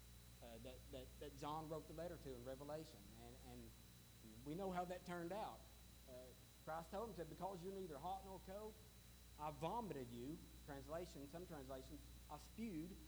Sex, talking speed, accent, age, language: male, 170 wpm, American, 40-59, English